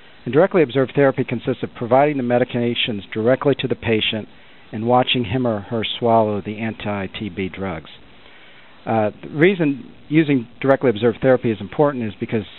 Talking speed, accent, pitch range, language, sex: 160 wpm, American, 105-130 Hz, English, male